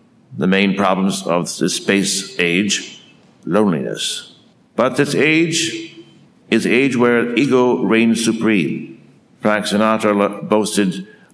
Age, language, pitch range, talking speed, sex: 60-79, English, 105-145 Hz, 110 wpm, male